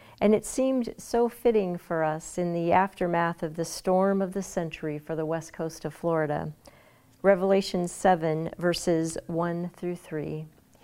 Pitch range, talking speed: 165-205 Hz, 150 wpm